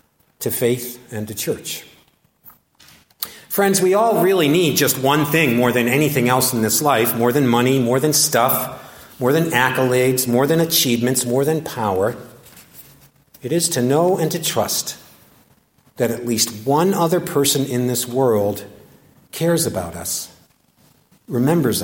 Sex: male